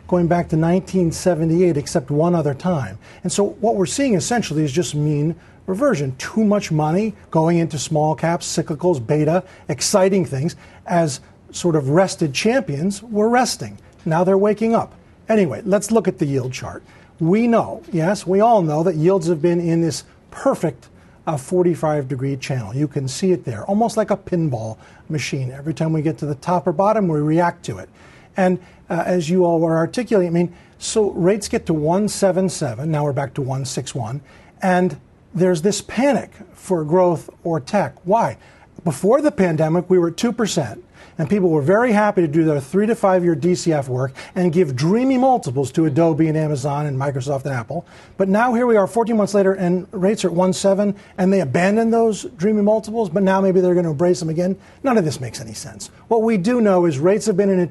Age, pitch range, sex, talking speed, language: 40-59, 150-195 Hz, male, 200 wpm, English